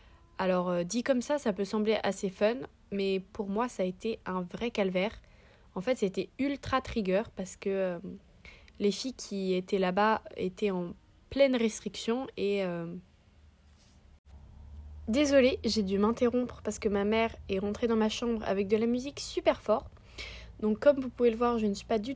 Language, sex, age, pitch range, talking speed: French, female, 20-39, 195-245 Hz, 180 wpm